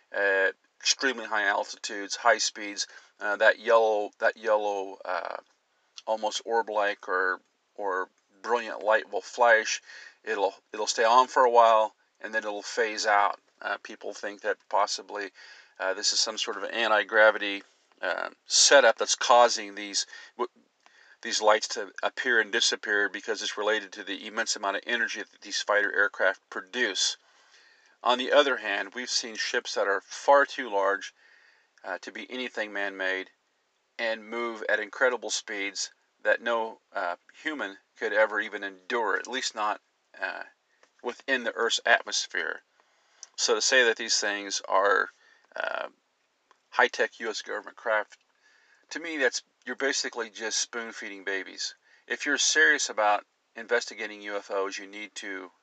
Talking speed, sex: 150 wpm, male